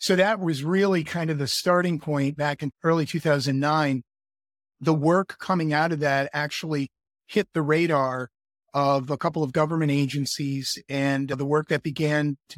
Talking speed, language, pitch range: 165 wpm, English, 140-165 Hz